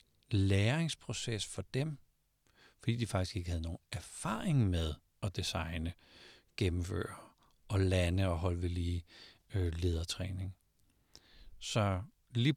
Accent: native